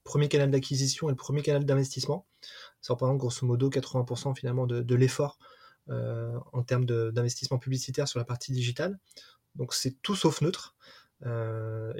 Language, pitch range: French, 130-150 Hz